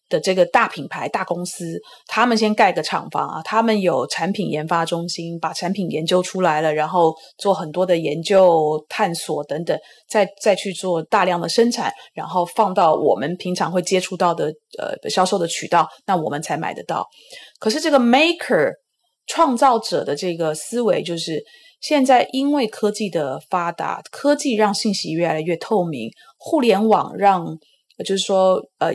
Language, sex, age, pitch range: Chinese, female, 20-39, 175-240 Hz